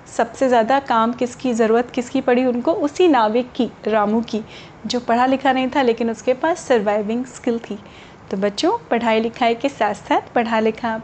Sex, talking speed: female, 180 wpm